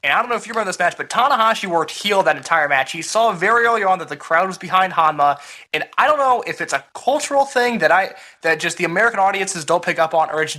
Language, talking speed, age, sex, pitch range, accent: English, 280 wpm, 20-39, male, 155-215 Hz, American